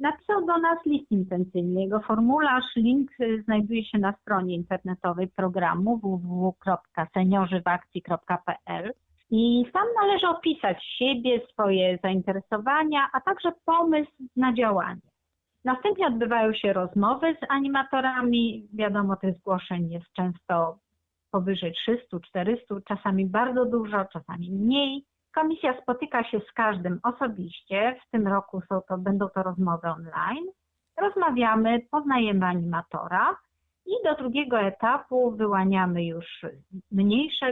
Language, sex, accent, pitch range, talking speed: Polish, female, native, 185-260 Hz, 110 wpm